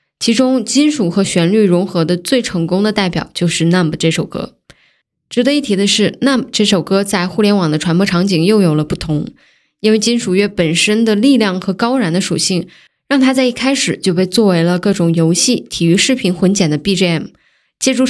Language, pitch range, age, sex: Chinese, 175-215 Hz, 10-29, female